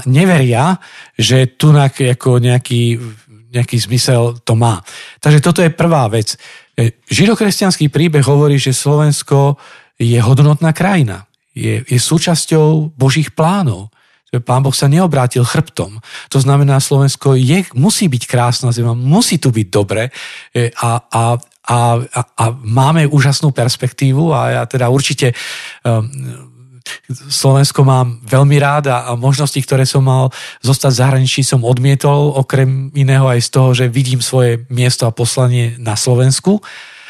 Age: 40-59